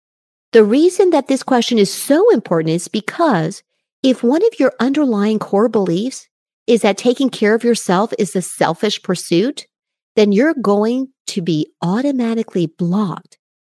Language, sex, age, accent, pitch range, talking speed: English, female, 50-69, American, 195-285 Hz, 150 wpm